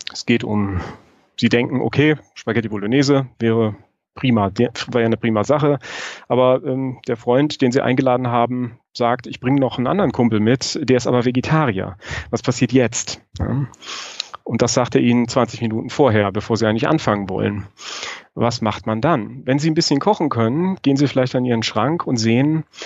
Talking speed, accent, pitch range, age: 185 wpm, German, 115-135 Hz, 40-59